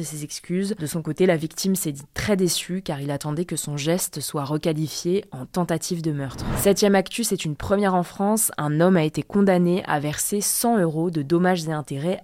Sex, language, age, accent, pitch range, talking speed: female, French, 20-39, French, 150-185 Hz, 210 wpm